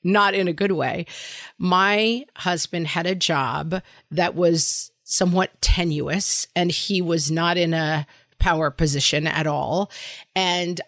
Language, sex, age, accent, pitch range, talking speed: English, female, 40-59, American, 165-205 Hz, 140 wpm